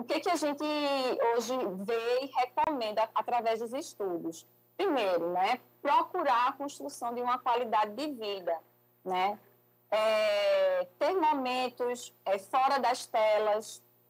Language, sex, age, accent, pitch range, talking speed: Portuguese, female, 20-39, Brazilian, 205-265 Hz, 120 wpm